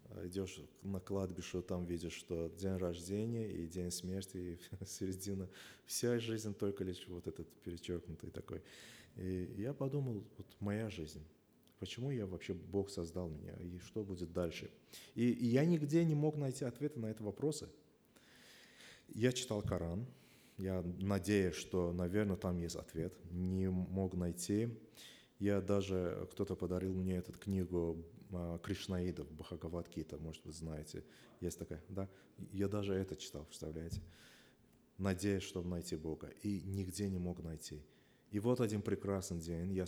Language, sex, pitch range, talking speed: Russian, male, 85-100 Hz, 145 wpm